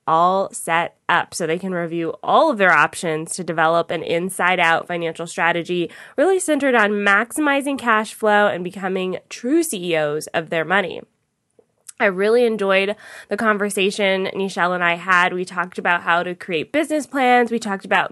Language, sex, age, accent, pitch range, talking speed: English, female, 20-39, American, 175-215 Hz, 165 wpm